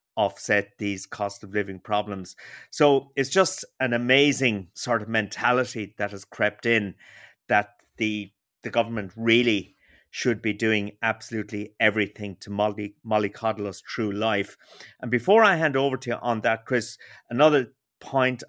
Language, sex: English, male